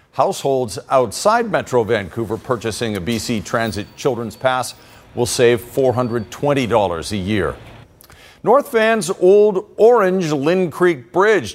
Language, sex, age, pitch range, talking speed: English, male, 50-69, 115-165 Hz, 115 wpm